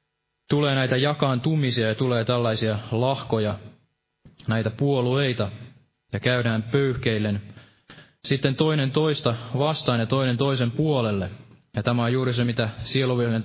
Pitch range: 115-130 Hz